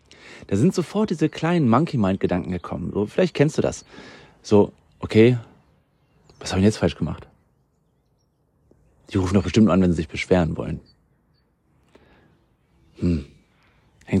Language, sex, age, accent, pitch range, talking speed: German, male, 40-59, German, 95-120 Hz, 135 wpm